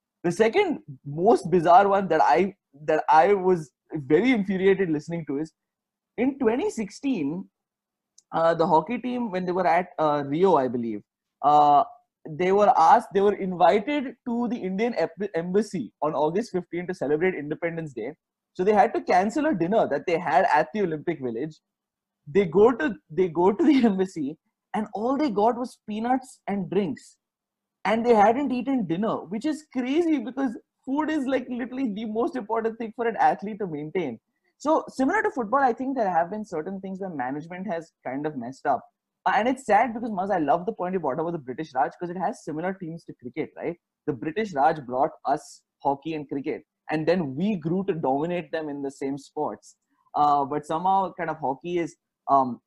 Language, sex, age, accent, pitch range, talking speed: English, male, 20-39, Indian, 160-240 Hz, 190 wpm